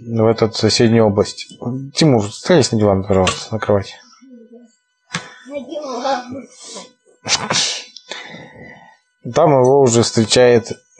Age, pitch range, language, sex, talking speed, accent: 20-39, 110-135 Hz, Russian, male, 80 wpm, native